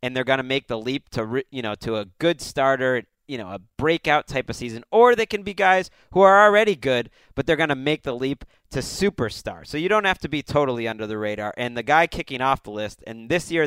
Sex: male